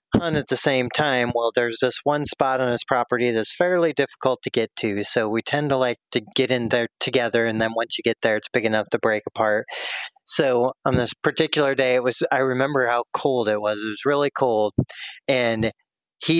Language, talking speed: English, 215 wpm